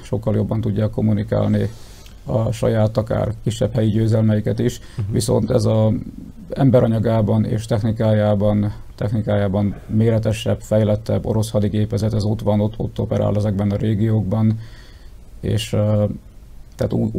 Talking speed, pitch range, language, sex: 115 wpm, 105-115 Hz, Hungarian, male